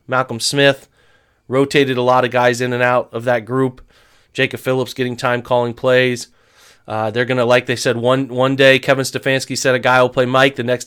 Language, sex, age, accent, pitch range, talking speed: English, male, 30-49, American, 120-140 Hz, 210 wpm